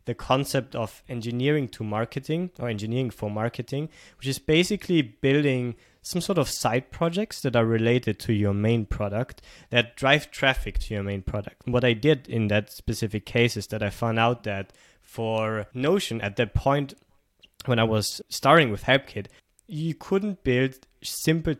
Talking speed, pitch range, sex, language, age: 170 wpm, 110-140 Hz, male, English, 20-39